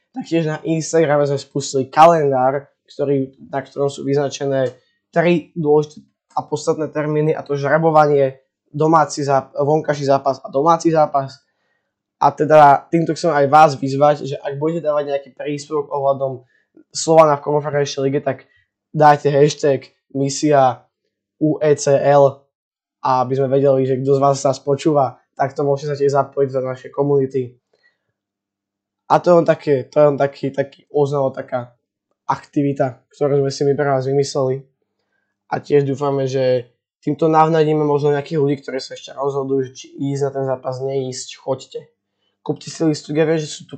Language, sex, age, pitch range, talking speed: Slovak, male, 10-29, 135-150 Hz, 160 wpm